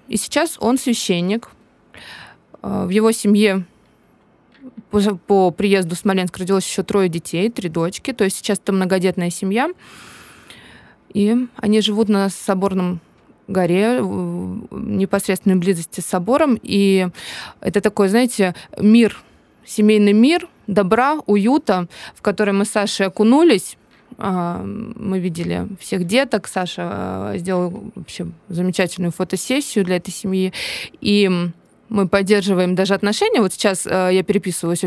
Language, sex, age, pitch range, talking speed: Russian, female, 20-39, 185-220 Hz, 120 wpm